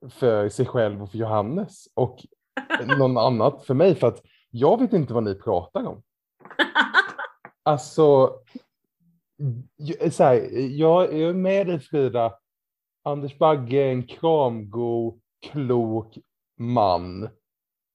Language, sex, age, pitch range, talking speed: Swedish, male, 30-49, 120-165 Hz, 115 wpm